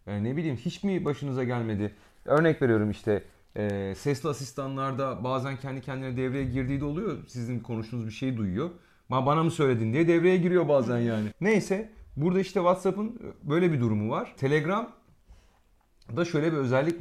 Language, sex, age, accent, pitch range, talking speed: Turkish, male, 40-59, native, 110-165 Hz, 165 wpm